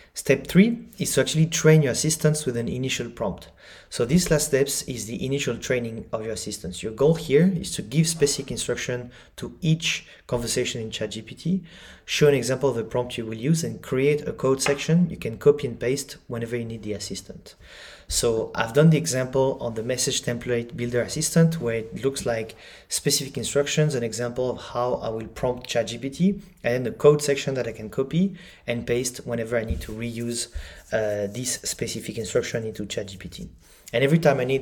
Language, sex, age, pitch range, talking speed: English, male, 30-49, 115-145 Hz, 195 wpm